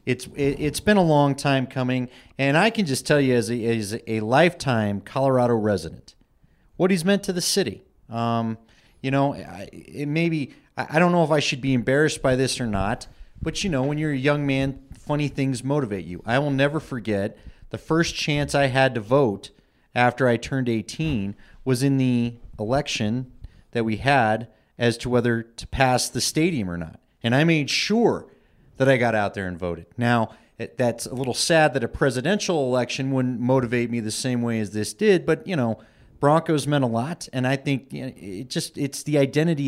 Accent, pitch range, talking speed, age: American, 115-145 Hz, 205 wpm, 30-49